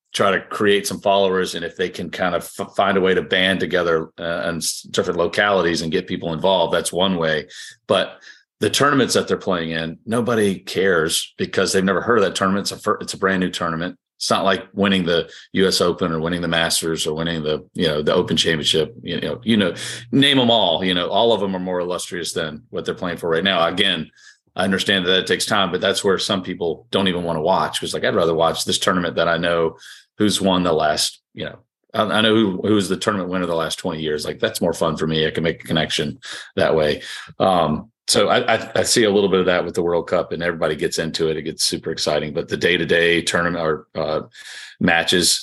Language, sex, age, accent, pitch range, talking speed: English, male, 40-59, American, 85-95 Hz, 240 wpm